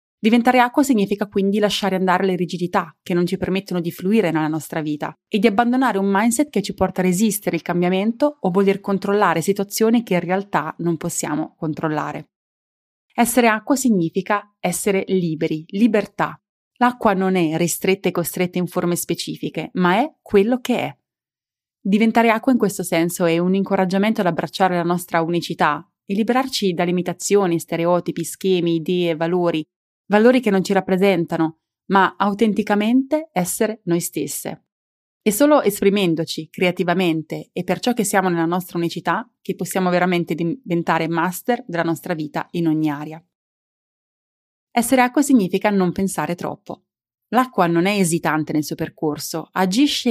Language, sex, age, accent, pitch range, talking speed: Italian, female, 30-49, native, 170-210 Hz, 150 wpm